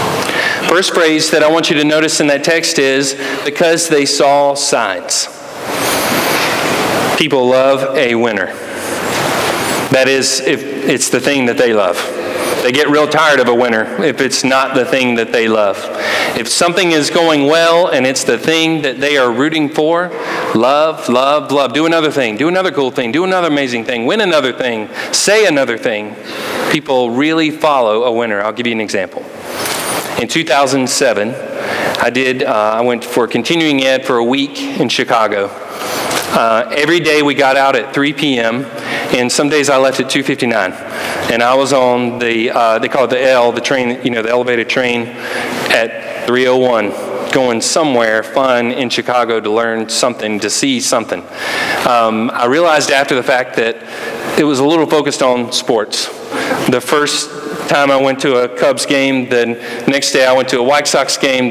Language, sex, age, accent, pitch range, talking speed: English, male, 40-59, American, 120-150 Hz, 180 wpm